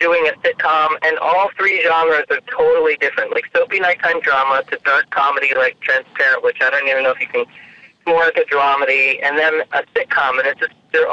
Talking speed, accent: 215 wpm, American